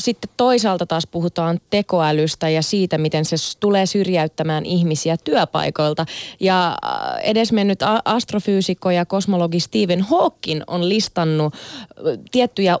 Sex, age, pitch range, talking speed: female, 30-49, 175-250 Hz, 110 wpm